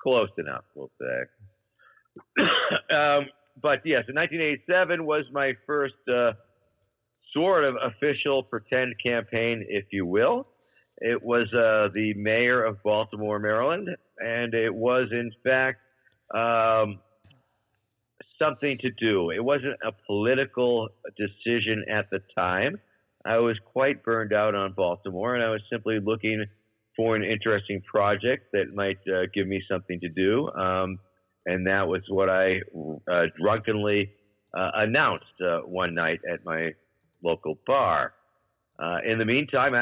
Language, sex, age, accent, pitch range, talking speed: English, male, 50-69, American, 100-120 Hz, 140 wpm